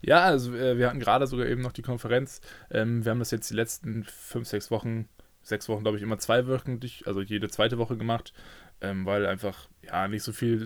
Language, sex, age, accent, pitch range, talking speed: German, male, 20-39, German, 105-120 Hz, 210 wpm